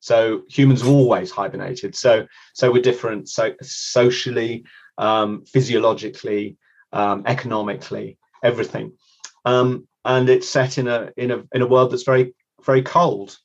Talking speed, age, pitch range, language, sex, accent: 140 wpm, 30-49, 110-130 Hz, English, male, British